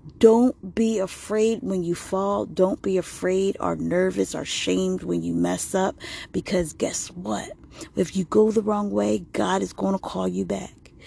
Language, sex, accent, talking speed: English, female, American, 180 wpm